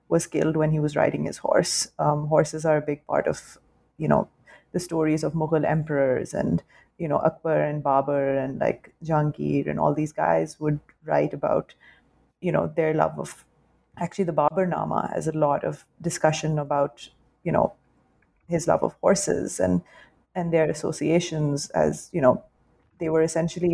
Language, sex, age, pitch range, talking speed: English, female, 30-49, 150-170 Hz, 175 wpm